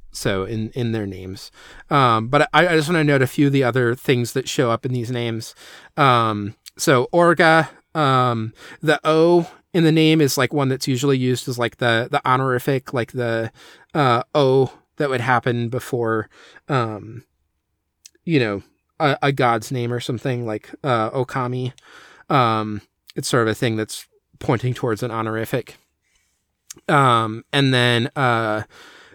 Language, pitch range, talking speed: English, 115-145 Hz, 165 wpm